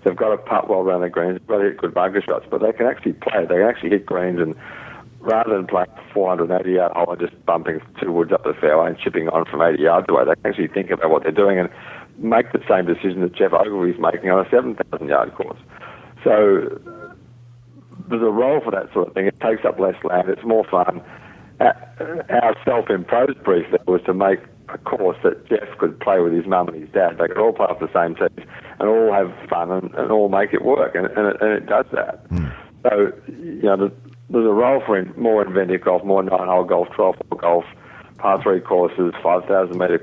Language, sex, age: English, male, 50-69